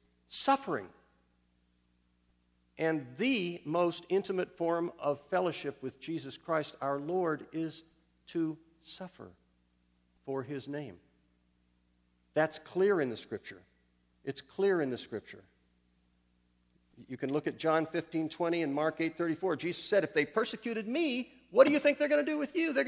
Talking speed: 145 wpm